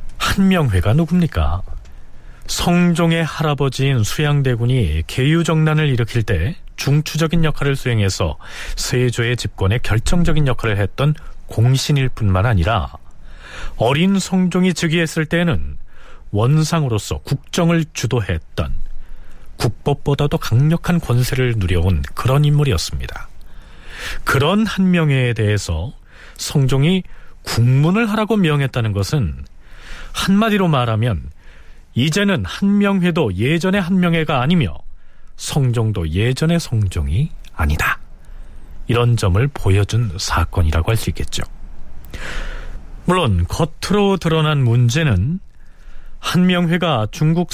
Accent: native